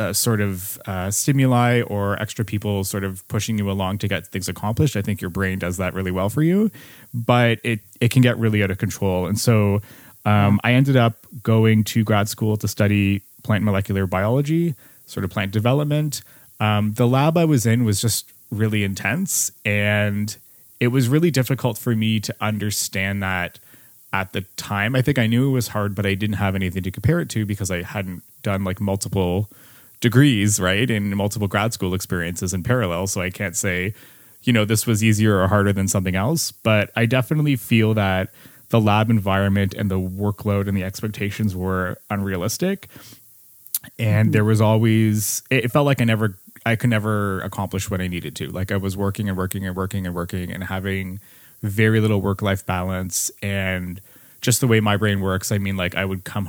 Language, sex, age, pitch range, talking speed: English, male, 20-39, 95-115 Hz, 200 wpm